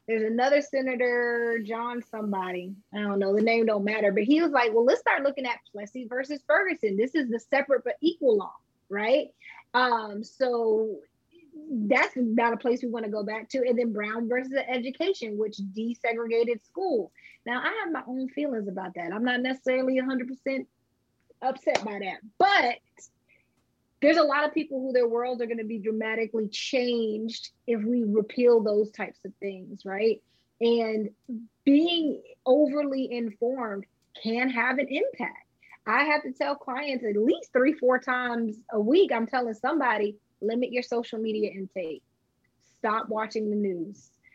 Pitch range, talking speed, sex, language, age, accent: 215-275 Hz, 165 wpm, female, English, 20-39, American